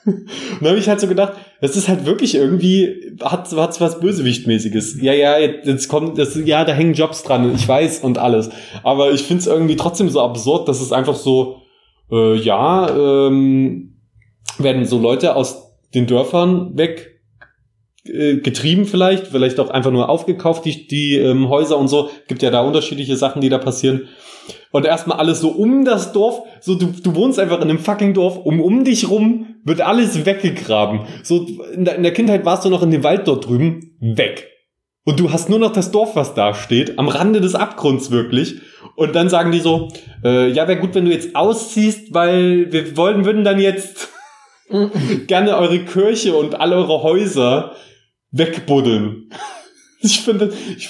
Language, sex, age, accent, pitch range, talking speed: German, male, 20-39, German, 130-190 Hz, 180 wpm